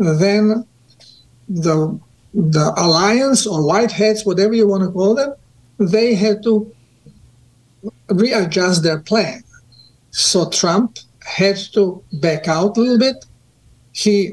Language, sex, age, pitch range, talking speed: English, male, 50-69, 160-215 Hz, 115 wpm